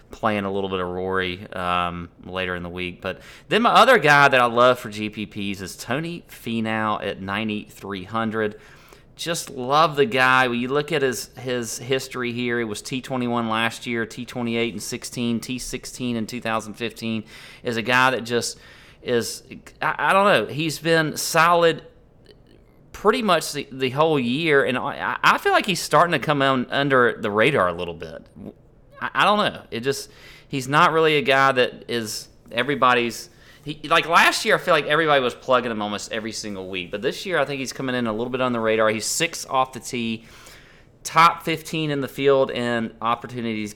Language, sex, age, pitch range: English, male, 30-49, 105-135 Hz